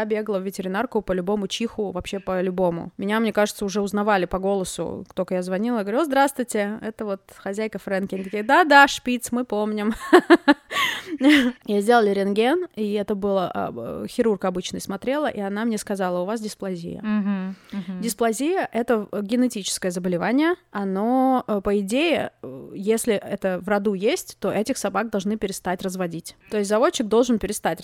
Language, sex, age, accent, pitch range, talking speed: Russian, female, 20-39, native, 185-225 Hz, 155 wpm